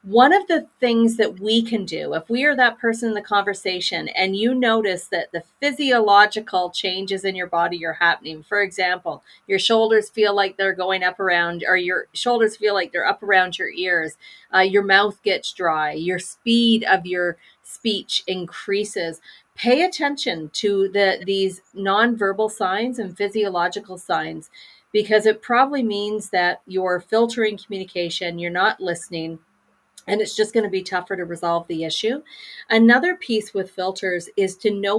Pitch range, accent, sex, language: 180-220 Hz, American, female, English